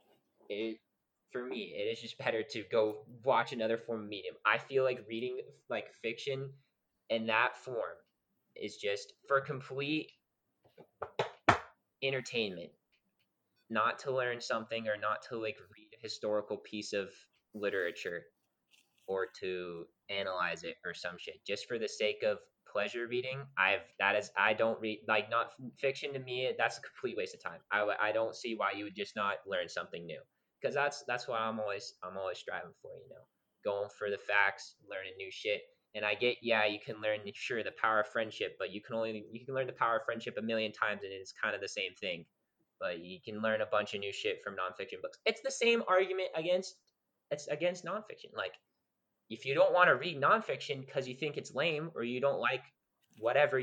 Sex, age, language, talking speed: male, 20-39, English, 195 wpm